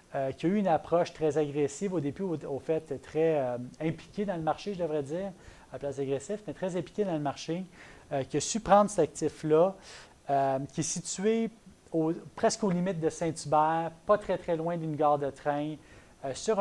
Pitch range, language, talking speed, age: 145-180 Hz, French, 215 wpm, 30-49